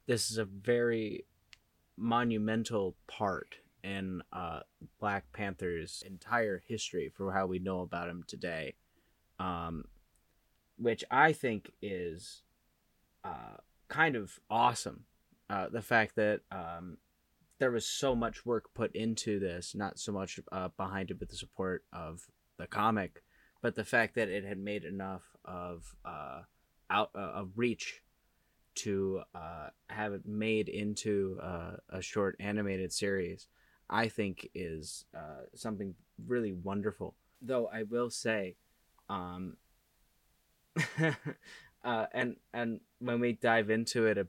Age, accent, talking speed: 20-39, American, 135 wpm